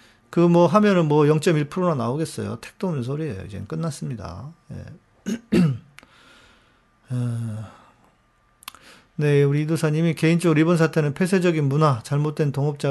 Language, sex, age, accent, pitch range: Korean, male, 40-59, native, 125-180 Hz